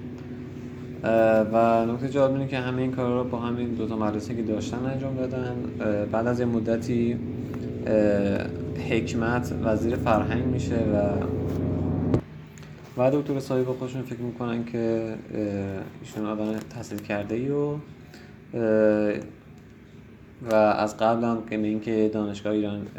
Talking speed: 125 wpm